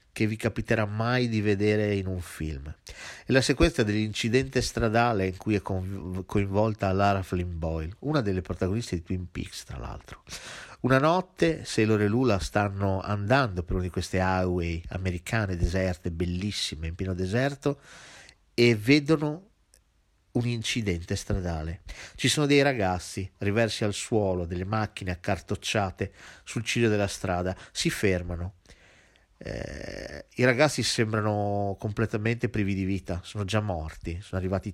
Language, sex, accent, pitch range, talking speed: Italian, male, native, 90-115 Hz, 140 wpm